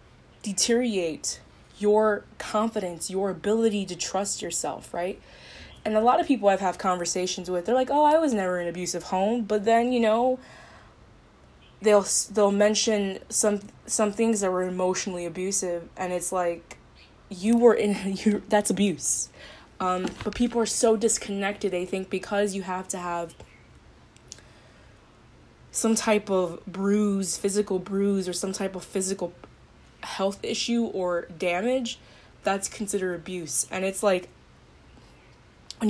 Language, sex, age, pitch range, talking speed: English, female, 20-39, 180-215 Hz, 140 wpm